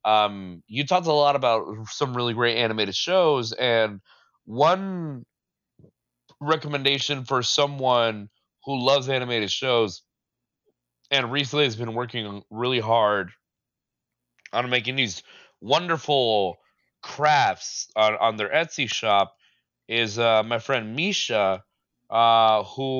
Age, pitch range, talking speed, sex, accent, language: 20-39, 110-145 Hz, 115 wpm, male, American, English